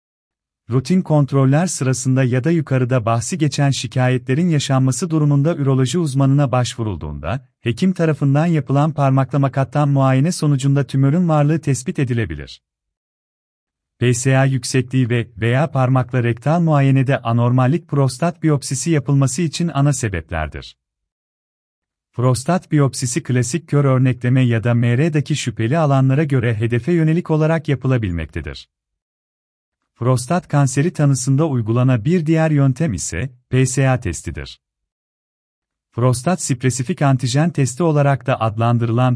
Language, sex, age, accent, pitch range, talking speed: Turkish, male, 40-59, native, 115-150 Hz, 110 wpm